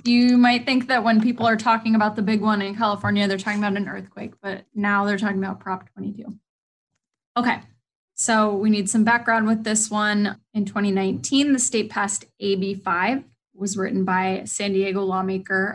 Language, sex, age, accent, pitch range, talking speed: English, female, 10-29, American, 195-225 Hz, 180 wpm